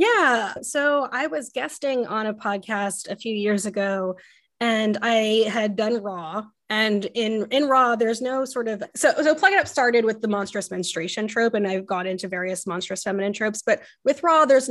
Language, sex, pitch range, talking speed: English, female, 195-250 Hz, 195 wpm